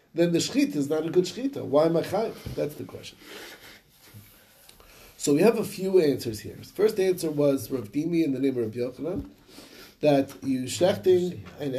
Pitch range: 135-185 Hz